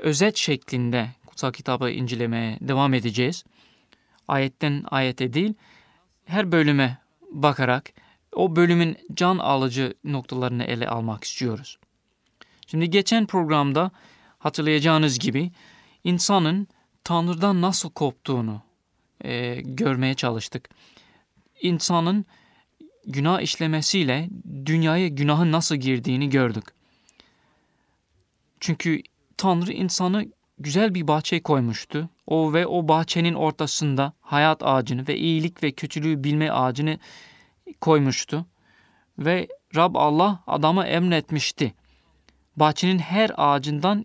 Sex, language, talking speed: male, Turkish, 95 wpm